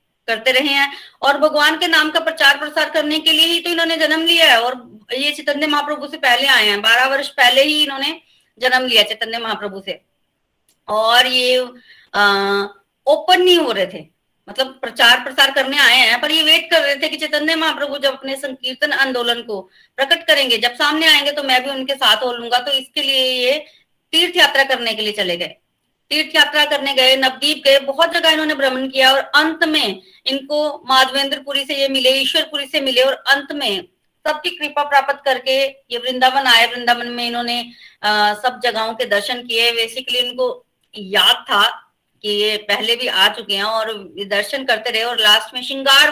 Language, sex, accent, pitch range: Hindi, female, native, 235-295 Hz